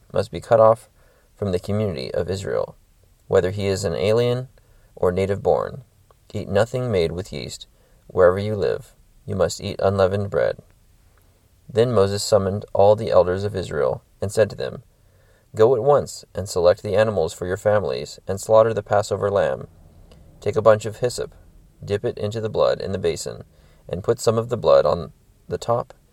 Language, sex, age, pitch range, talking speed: English, male, 30-49, 95-120 Hz, 180 wpm